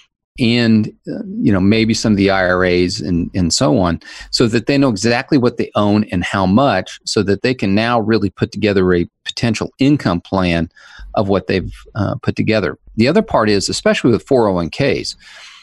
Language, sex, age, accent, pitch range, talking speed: English, male, 40-59, American, 95-120 Hz, 190 wpm